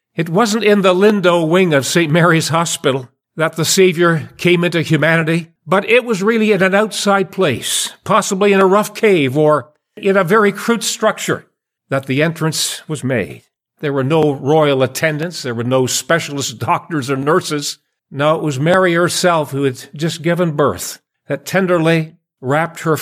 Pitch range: 140-185 Hz